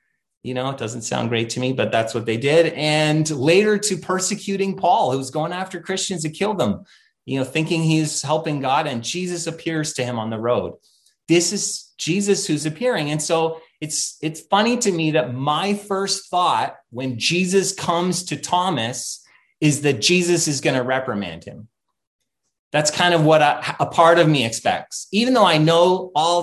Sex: male